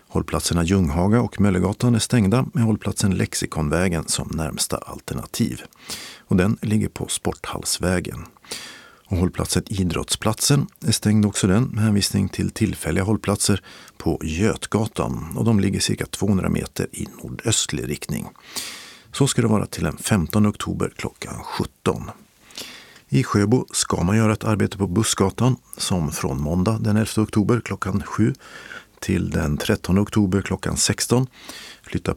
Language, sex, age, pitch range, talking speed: Swedish, male, 50-69, 90-110 Hz, 140 wpm